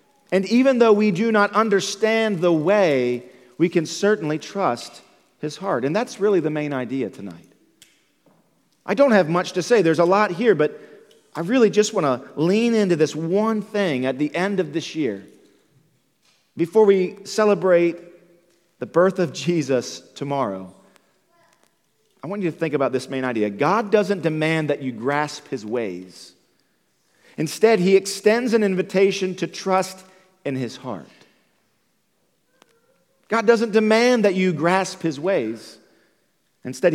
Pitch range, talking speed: 135-195 Hz, 150 wpm